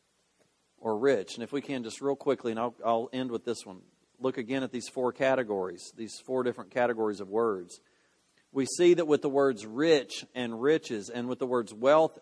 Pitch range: 125-165 Hz